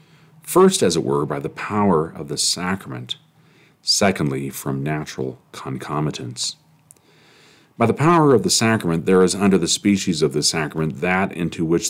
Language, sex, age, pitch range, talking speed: English, male, 40-59, 75-105 Hz, 155 wpm